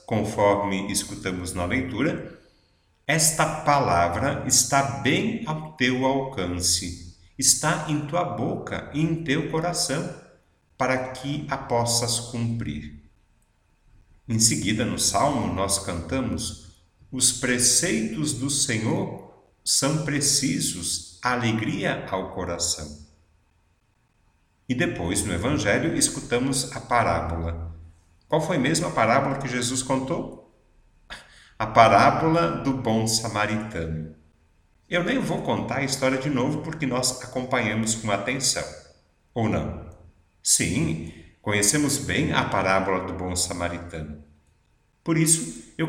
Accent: Brazilian